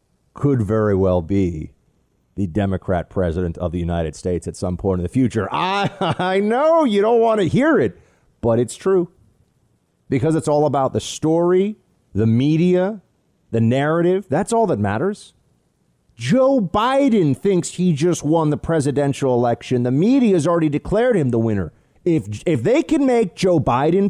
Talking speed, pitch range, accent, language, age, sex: 165 wpm, 115-190 Hz, American, English, 40-59, male